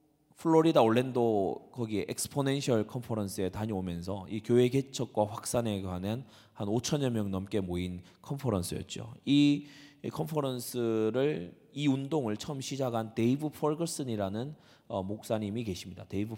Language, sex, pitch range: Korean, male, 100-140 Hz